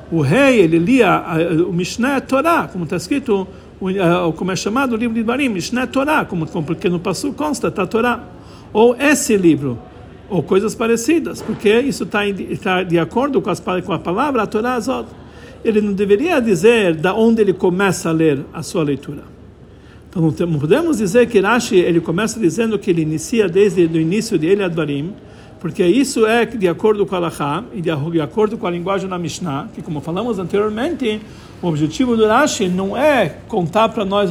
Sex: male